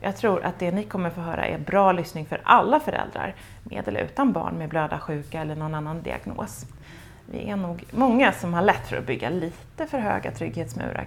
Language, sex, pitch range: Swedish, female, 160-225 Hz